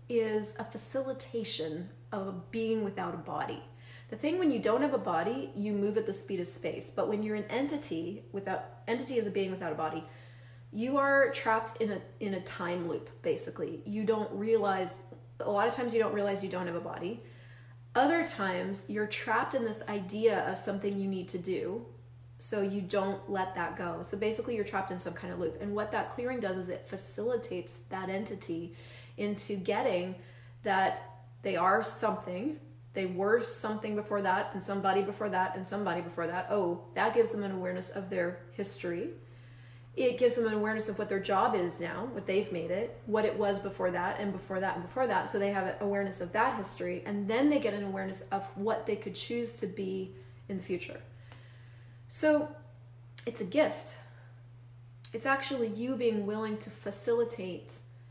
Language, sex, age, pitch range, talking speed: English, female, 30-49, 170-215 Hz, 195 wpm